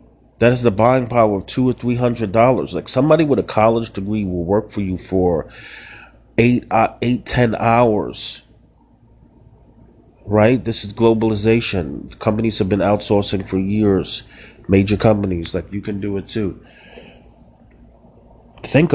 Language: English